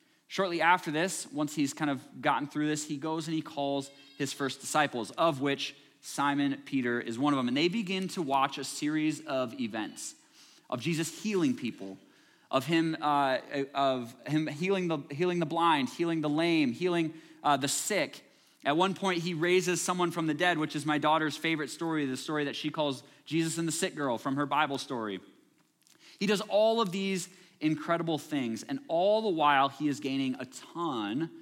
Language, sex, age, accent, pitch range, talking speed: English, male, 20-39, American, 135-180 Hz, 195 wpm